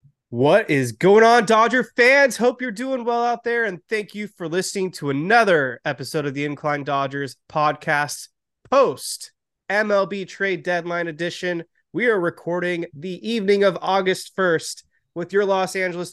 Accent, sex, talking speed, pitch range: American, male, 155 wpm, 160-195 Hz